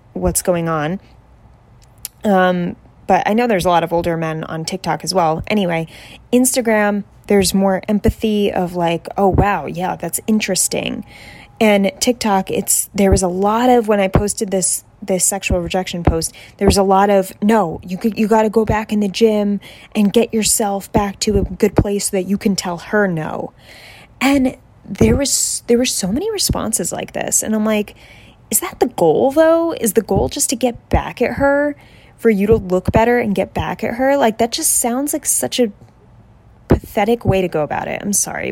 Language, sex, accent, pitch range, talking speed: English, female, American, 190-240 Hz, 200 wpm